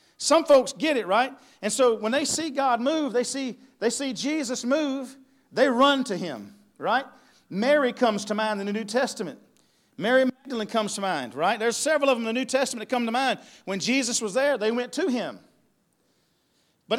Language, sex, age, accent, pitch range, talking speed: English, male, 50-69, American, 220-270 Hz, 205 wpm